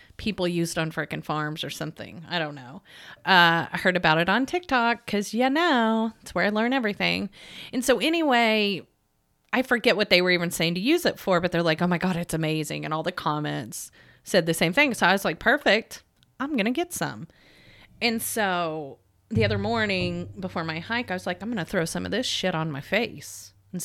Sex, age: female, 30-49